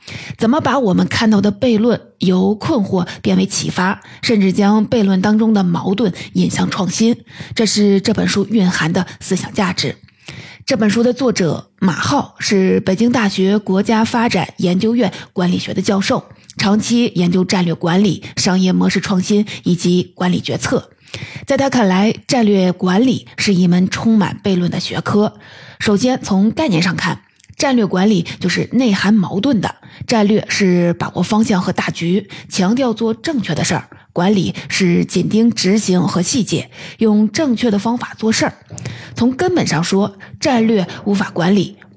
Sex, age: female, 30-49